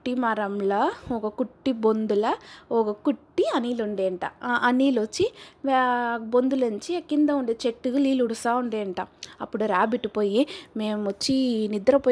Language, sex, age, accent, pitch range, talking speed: Telugu, female, 20-39, native, 215-280 Hz, 120 wpm